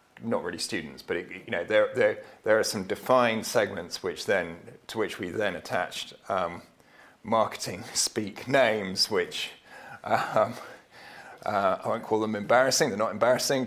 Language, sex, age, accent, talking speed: English, male, 40-59, British, 160 wpm